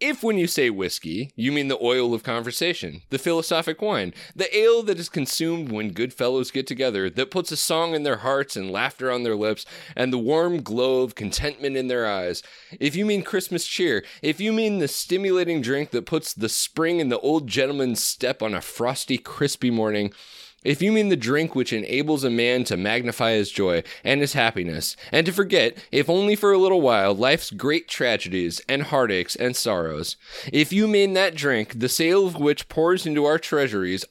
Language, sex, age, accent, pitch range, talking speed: English, male, 20-39, American, 120-165 Hz, 200 wpm